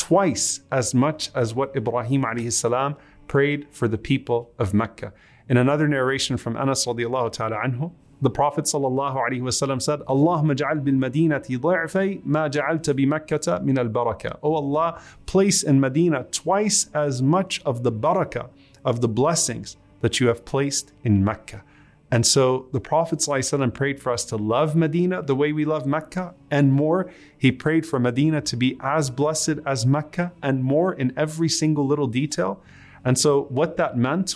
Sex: male